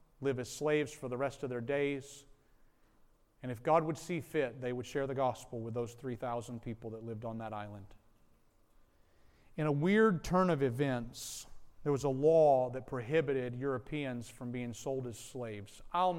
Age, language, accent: 40-59, English, American